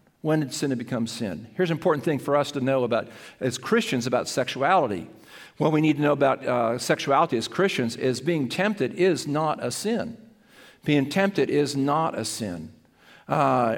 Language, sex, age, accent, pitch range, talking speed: English, male, 50-69, American, 125-155 Hz, 185 wpm